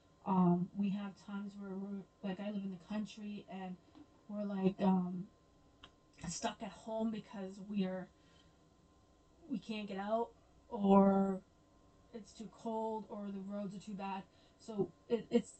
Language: English